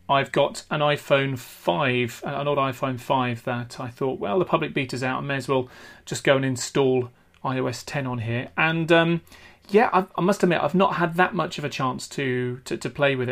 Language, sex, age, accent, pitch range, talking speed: English, male, 30-49, British, 125-155 Hz, 215 wpm